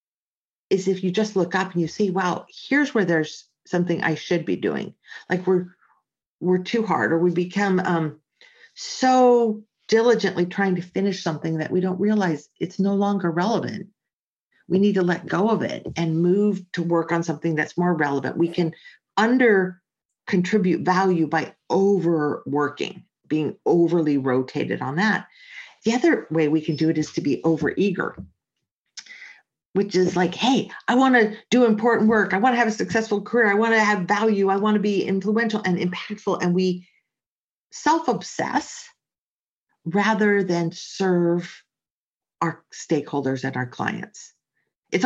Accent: American